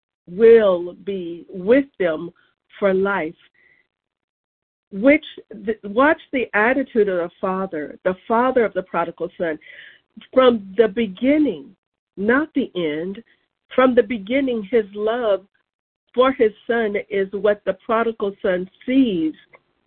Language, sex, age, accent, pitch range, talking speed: English, female, 50-69, American, 190-235 Hz, 120 wpm